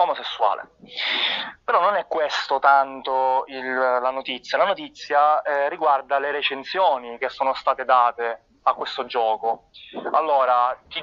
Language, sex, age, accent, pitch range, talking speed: Italian, male, 20-39, native, 130-150 Hz, 130 wpm